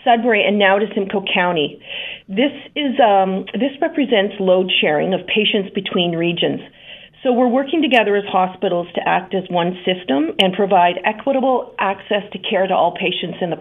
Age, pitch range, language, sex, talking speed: 40-59, 185-220 Hz, English, female, 170 wpm